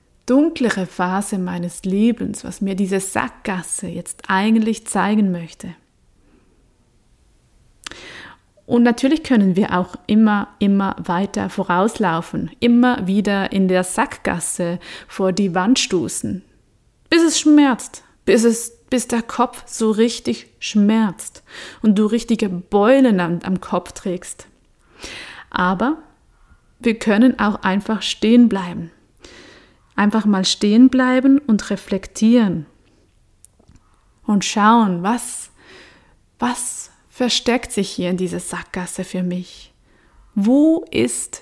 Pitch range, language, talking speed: 185-230 Hz, German, 110 wpm